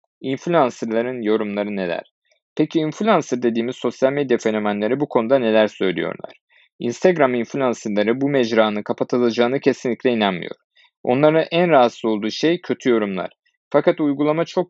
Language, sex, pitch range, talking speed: Turkish, male, 115-145 Hz, 125 wpm